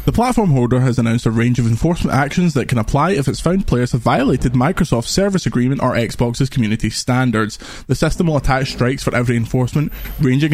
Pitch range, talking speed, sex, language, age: 120-150 Hz, 200 wpm, male, English, 20-39